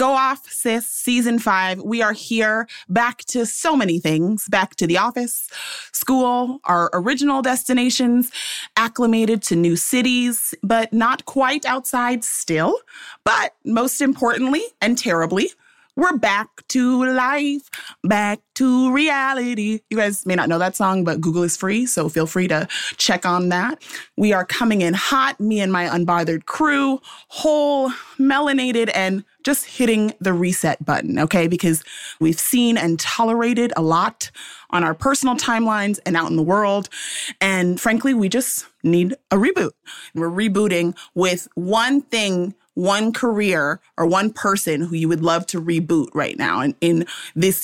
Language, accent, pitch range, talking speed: English, American, 180-255 Hz, 155 wpm